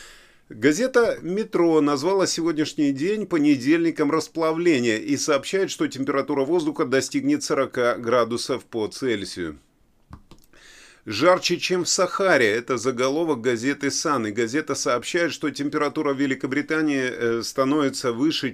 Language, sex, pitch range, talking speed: Russian, male, 125-180 Hz, 105 wpm